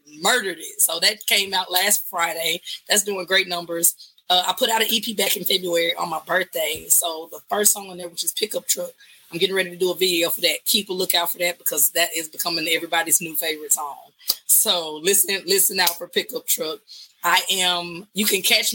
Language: English